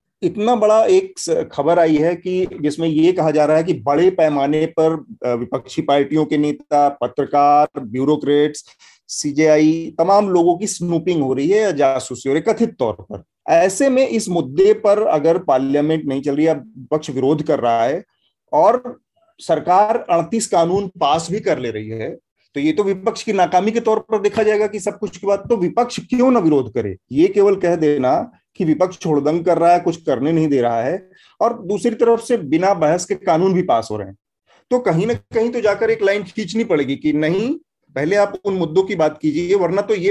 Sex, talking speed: male, 200 wpm